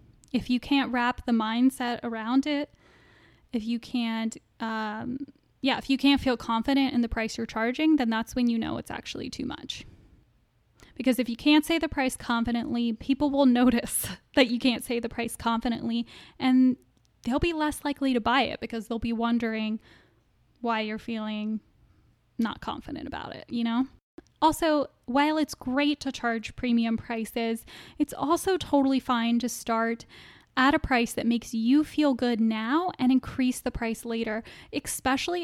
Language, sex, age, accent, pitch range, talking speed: English, female, 10-29, American, 230-275 Hz, 170 wpm